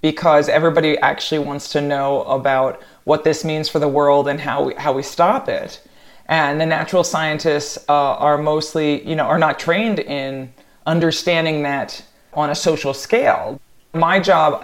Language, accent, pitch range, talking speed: English, American, 145-175 Hz, 165 wpm